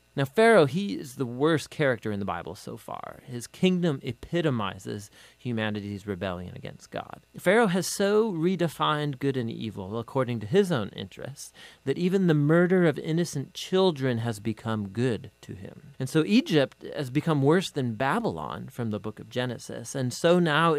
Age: 40-59